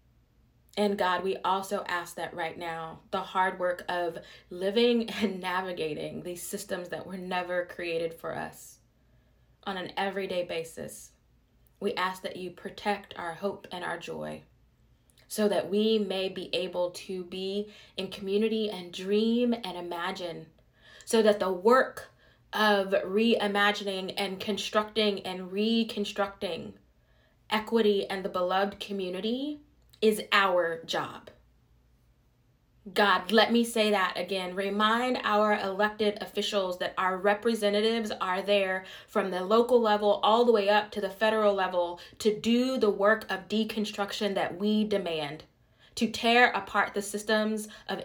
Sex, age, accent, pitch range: female, 20-39, American, 185-215 Hz